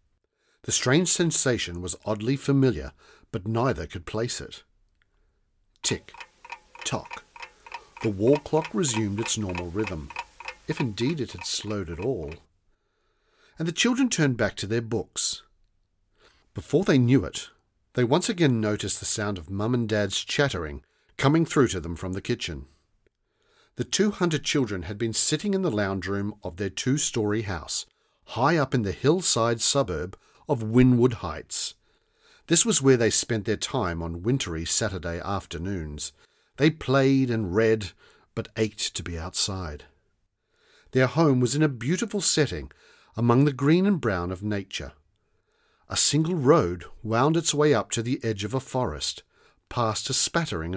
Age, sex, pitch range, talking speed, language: 50-69, male, 95-140 Hz, 155 wpm, English